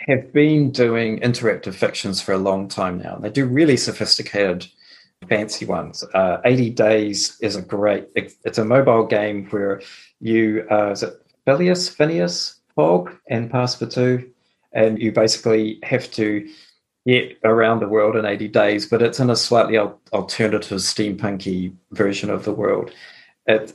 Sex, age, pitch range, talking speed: male, 40-59, 105-125 Hz, 155 wpm